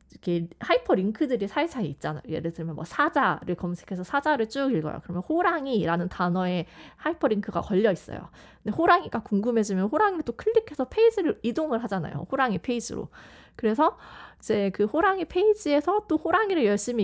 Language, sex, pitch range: Korean, female, 190-290 Hz